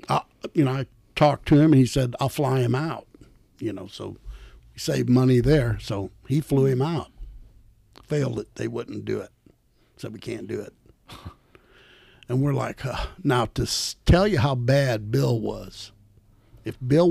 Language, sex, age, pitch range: English, male, 60-79, 105-145 Hz